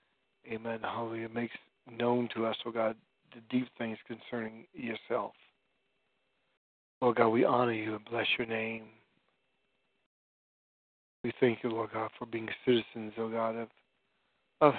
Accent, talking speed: American, 145 wpm